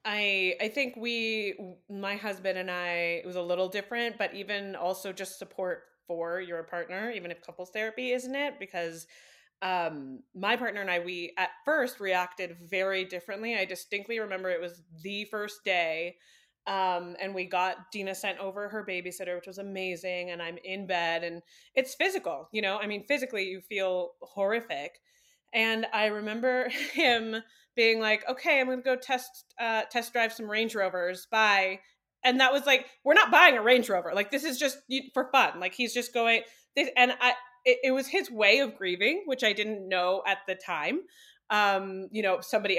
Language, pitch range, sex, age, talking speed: English, 185-245 Hz, female, 20-39, 185 wpm